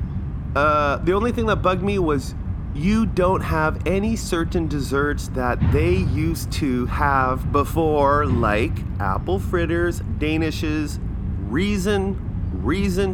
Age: 30-49